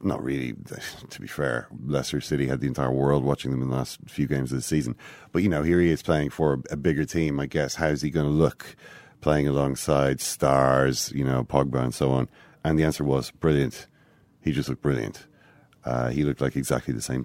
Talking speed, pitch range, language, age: 225 wpm, 65-85 Hz, English, 40-59